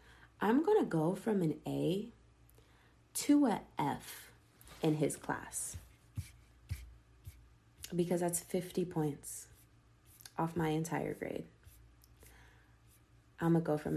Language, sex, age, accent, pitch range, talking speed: English, female, 20-39, American, 155-200 Hz, 110 wpm